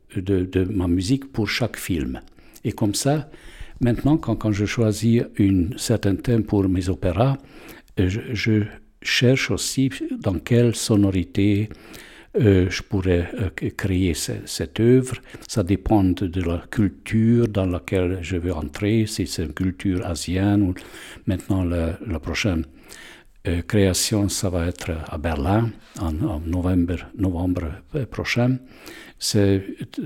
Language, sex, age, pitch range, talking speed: French, male, 60-79, 90-110 Hz, 130 wpm